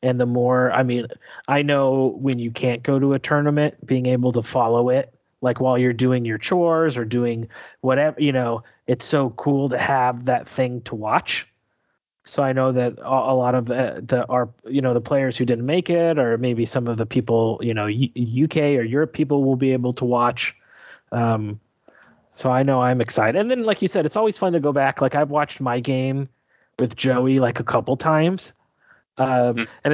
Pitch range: 125-150 Hz